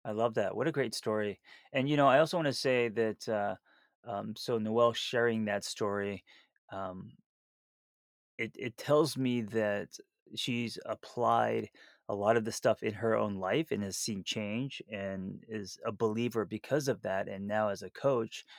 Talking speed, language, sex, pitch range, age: 180 wpm, English, male, 100-115 Hz, 30-49